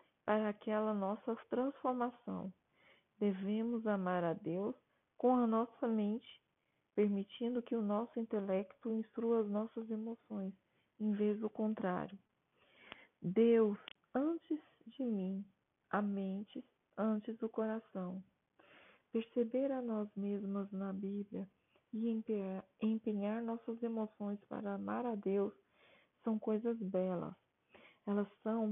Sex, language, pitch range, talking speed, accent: female, Portuguese, 200-235 Hz, 110 wpm, Brazilian